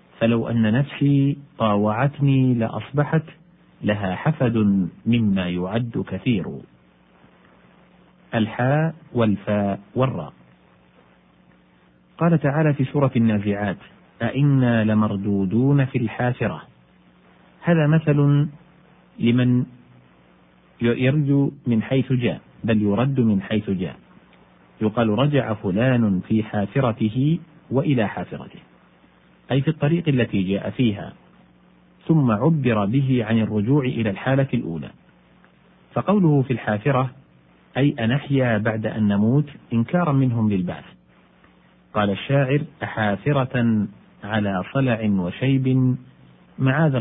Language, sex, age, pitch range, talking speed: Arabic, male, 40-59, 100-135 Hz, 95 wpm